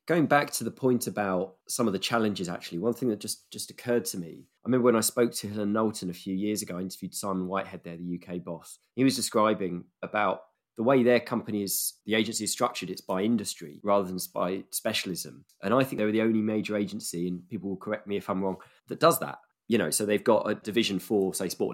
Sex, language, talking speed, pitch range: male, English, 245 wpm, 90-110 Hz